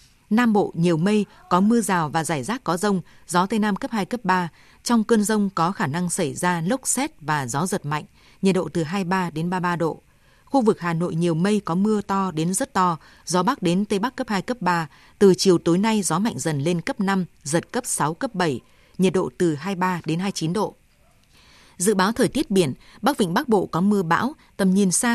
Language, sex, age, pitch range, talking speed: Vietnamese, female, 20-39, 170-220 Hz, 235 wpm